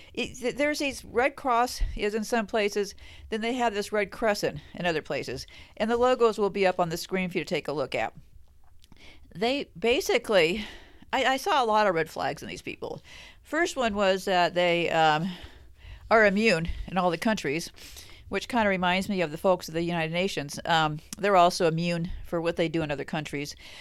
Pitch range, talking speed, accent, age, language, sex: 180-250 Hz, 205 wpm, American, 50-69, English, female